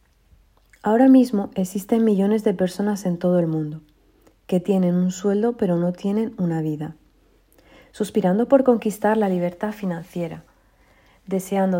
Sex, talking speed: female, 130 wpm